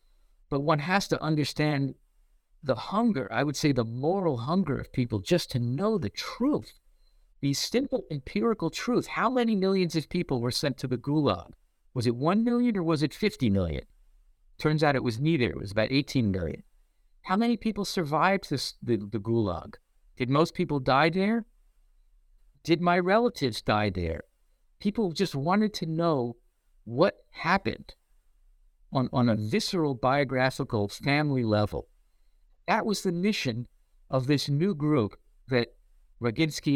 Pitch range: 115-165 Hz